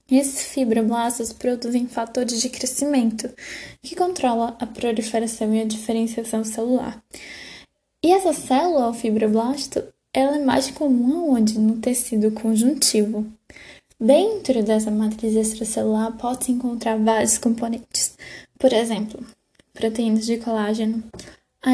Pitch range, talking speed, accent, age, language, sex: 225-260 Hz, 115 wpm, Brazilian, 10-29, Portuguese, female